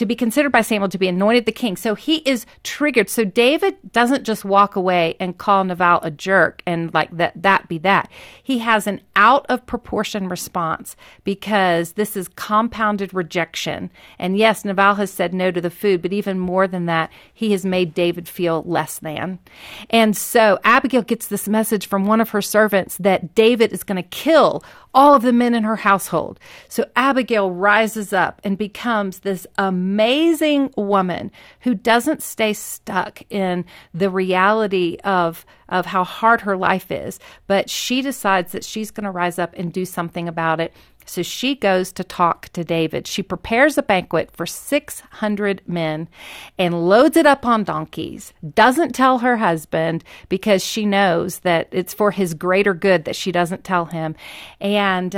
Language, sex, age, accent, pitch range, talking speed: English, female, 40-59, American, 175-220 Hz, 175 wpm